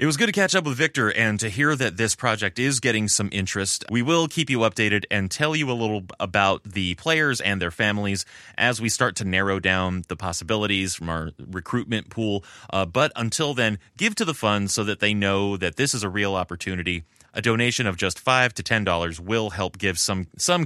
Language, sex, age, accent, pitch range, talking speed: English, male, 30-49, American, 95-120 Hz, 220 wpm